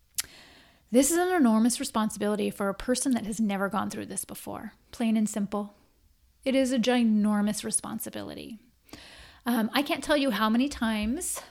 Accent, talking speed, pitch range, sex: American, 160 wpm, 215-265 Hz, female